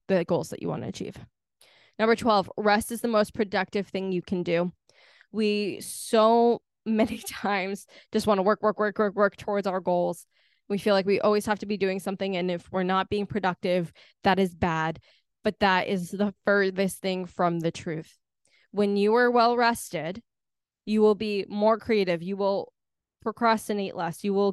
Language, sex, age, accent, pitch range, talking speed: English, female, 10-29, American, 195-230 Hz, 190 wpm